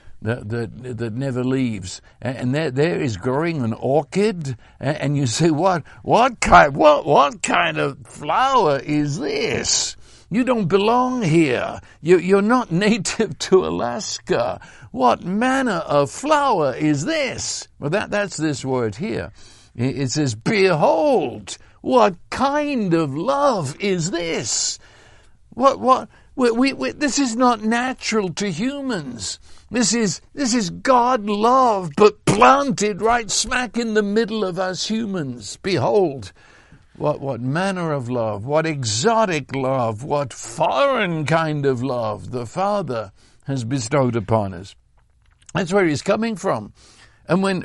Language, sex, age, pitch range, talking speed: English, male, 60-79, 135-215 Hz, 140 wpm